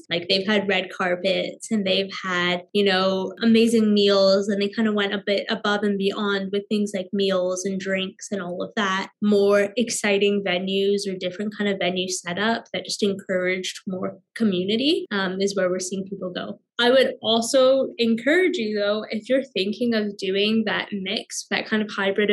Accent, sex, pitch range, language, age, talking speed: American, female, 190-230 Hz, English, 10-29, 190 wpm